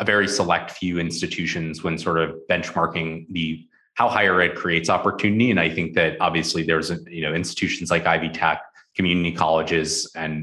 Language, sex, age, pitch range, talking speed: English, male, 30-49, 80-95 Hz, 180 wpm